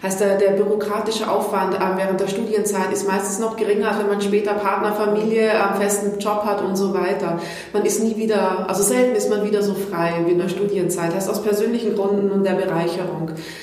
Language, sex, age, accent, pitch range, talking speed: German, female, 30-49, German, 190-210 Hz, 210 wpm